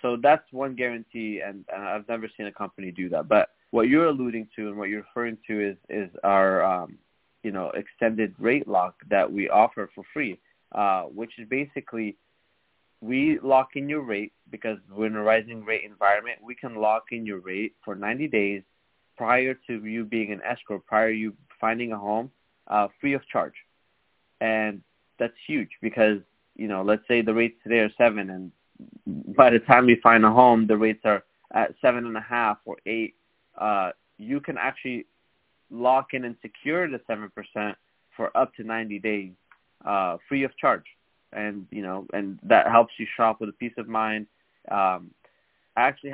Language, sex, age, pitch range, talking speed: English, male, 20-39, 105-125 Hz, 190 wpm